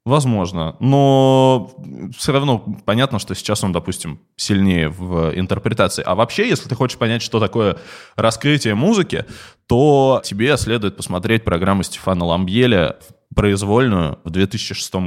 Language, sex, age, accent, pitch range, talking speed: Russian, male, 20-39, native, 95-120 Hz, 125 wpm